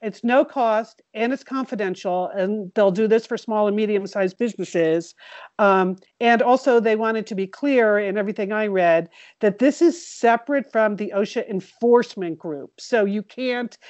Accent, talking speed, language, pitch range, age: American, 175 wpm, English, 190-235 Hz, 50-69